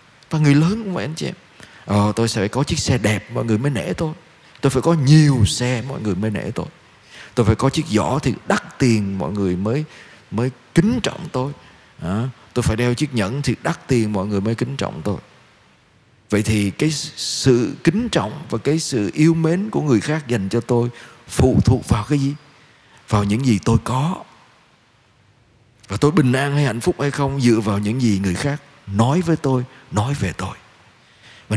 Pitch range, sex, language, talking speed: 115-165 Hz, male, Vietnamese, 210 wpm